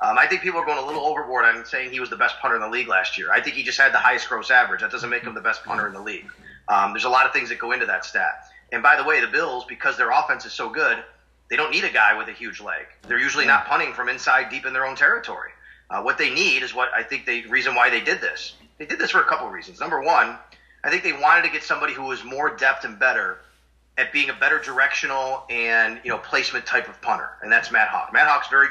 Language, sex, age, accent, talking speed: English, male, 30-49, American, 295 wpm